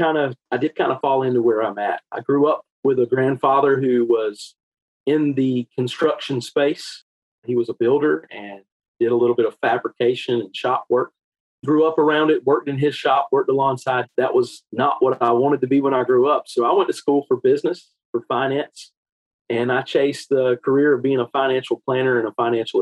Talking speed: 215 wpm